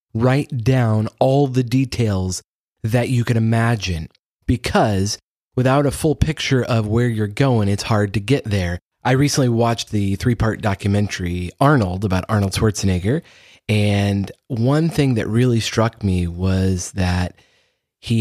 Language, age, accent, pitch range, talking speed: English, 30-49, American, 100-120 Hz, 145 wpm